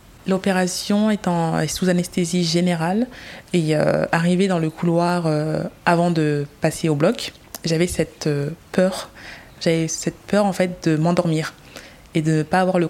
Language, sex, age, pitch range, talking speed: French, female, 20-39, 160-185 Hz, 160 wpm